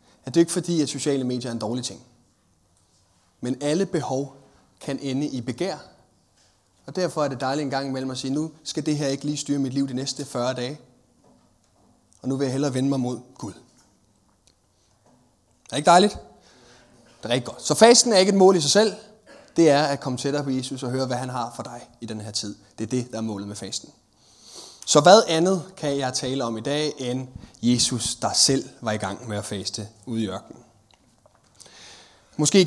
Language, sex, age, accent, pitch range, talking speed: Danish, male, 30-49, native, 115-150 Hz, 215 wpm